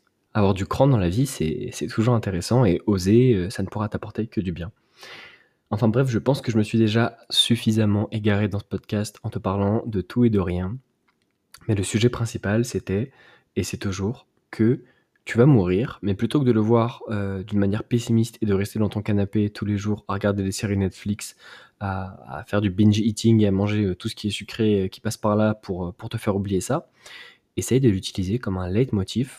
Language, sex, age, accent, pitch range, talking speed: French, male, 20-39, French, 100-115 Hz, 215 wpm